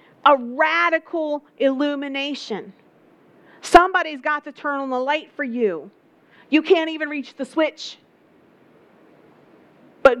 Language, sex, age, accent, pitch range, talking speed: English, female, 40-59, American, 235-290 Hz, 110 wpm